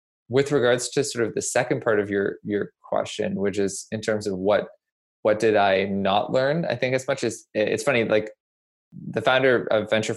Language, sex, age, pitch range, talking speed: English, male, 20-39, 105-120 Hz, 205 wpm